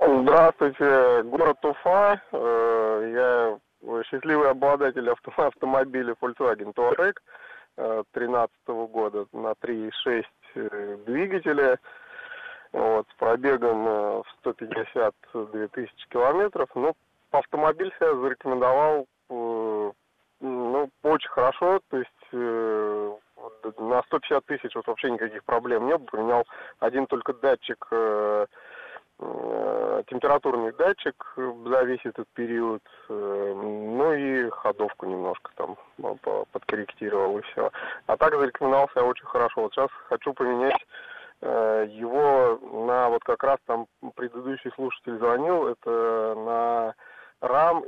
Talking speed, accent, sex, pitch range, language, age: 100 wpm, native, male, 115-150 Hz, Russian, 20-39